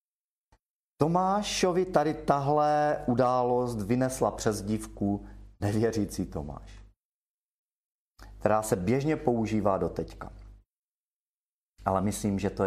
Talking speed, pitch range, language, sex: 90 wpm, 100-140 Hz, Czech, male